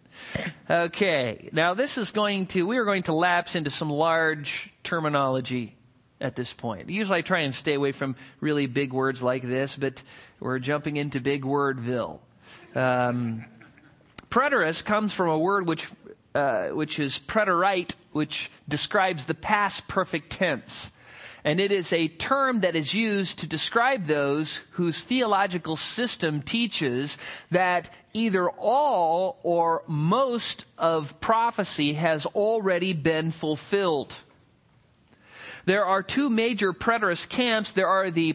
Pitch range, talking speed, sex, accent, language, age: 150-205 Hz, 140 wpm, male, American, English, 40-59